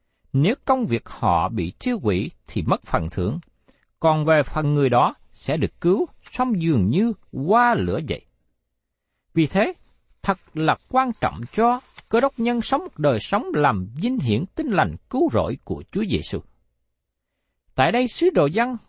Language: Vietnamese